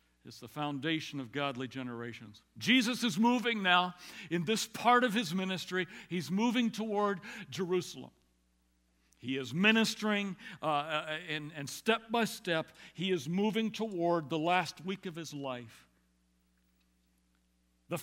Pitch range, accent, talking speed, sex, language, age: 135-220 Hz, American, 135 wpm, male, English, 60-79